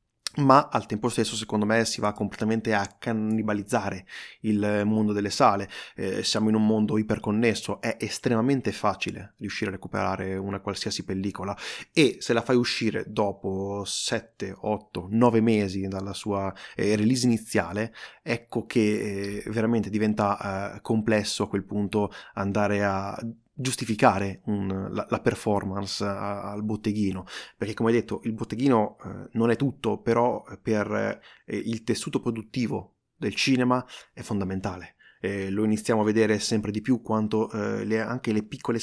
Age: 20-39